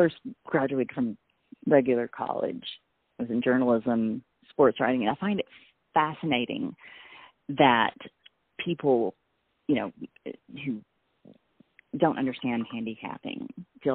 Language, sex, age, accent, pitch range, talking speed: English, female, 30-49, American, 120-175 Hz, 110 wpm